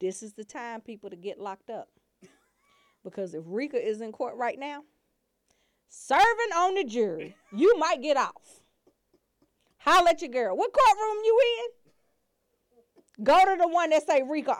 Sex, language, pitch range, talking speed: female, English, 270-375 Hz, 165 wpm